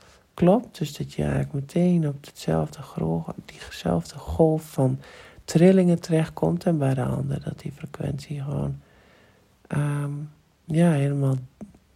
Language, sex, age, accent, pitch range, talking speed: Dutch, male, 50-69, Dutch, 90-150 Hz, 105 wpm